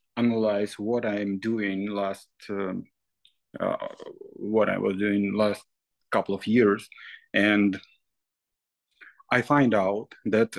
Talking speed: 120 wpm